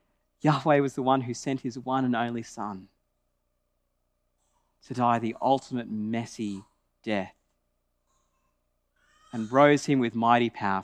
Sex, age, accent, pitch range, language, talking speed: male, 30-49, Australian, 120-180 Hz, English, 125 wpm